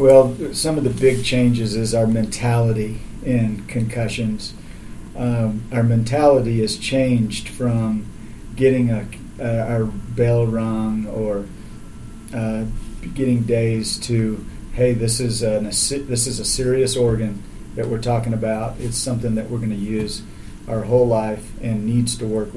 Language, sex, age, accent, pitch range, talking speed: English, male, 40-59, American, 105-115 Hz, 145 wpm